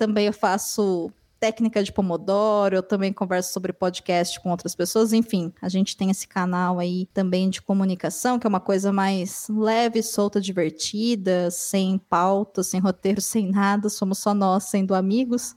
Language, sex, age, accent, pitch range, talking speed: Portuguese, female, 20-39, Brazilian, 190-225 Hz, 165 wpm